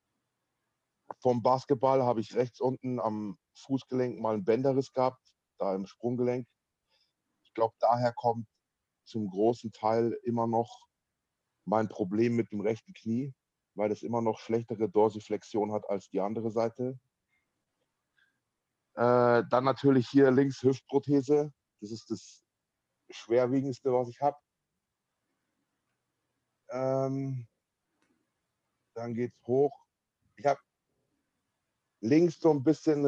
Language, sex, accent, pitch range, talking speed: English, male, German, 115-135 Hz, 115 wpm